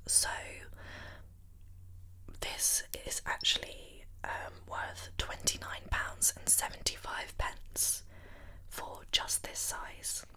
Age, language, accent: 20-39, English, British